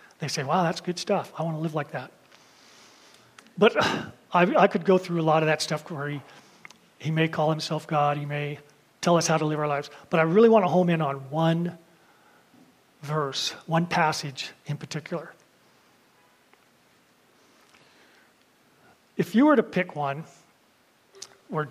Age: 40-59